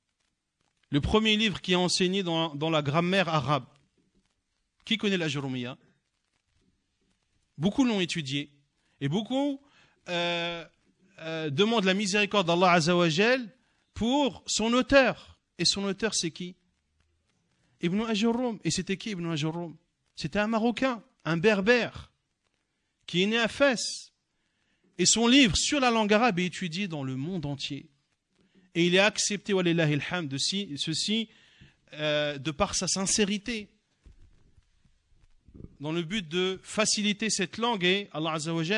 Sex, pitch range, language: male, 160-220 Hz, French